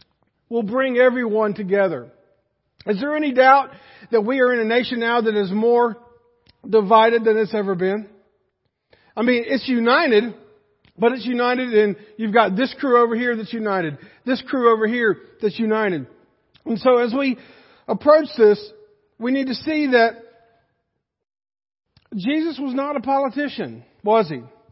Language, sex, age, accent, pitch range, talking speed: English, male, 50-69, American, 210-255 Hz, 155 wpm